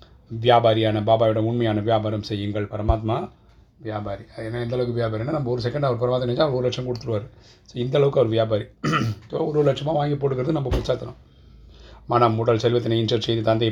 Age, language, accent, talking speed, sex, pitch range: 30-49, Tamil, native, 160 wpm, male, 110-120 Hz